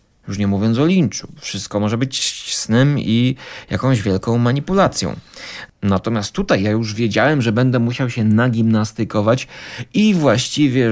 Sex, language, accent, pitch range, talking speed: male, Polish, native, 105-130 Hz, 135 wpm